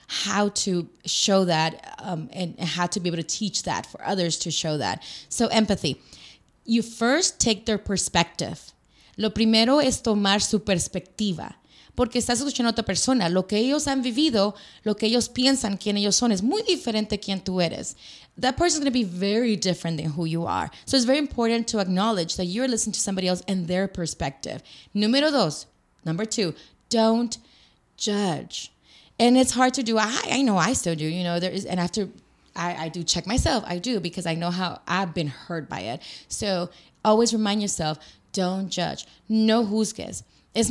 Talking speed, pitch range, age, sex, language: 190 wpm, 175-225 Hz, 20-39, female, Spanish